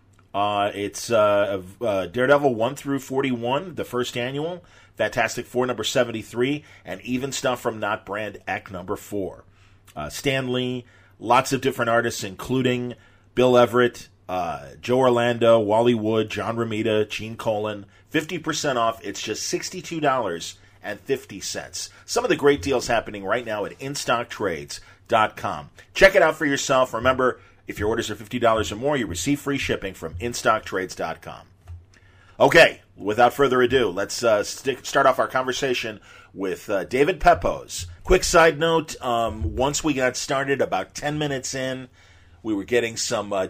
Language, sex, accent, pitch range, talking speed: English, male, American, 100-130 Hz, 155 wpm